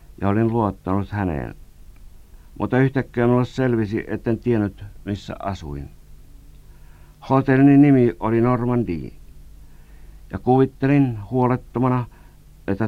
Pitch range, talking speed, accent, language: 80-120 Hz, 95 wpm, native, Finnish